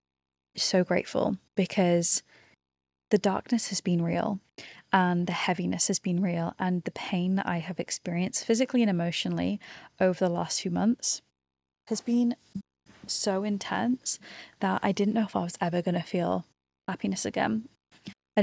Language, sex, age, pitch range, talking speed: English, female, 20-39, 170-195 Hz, 155 wpm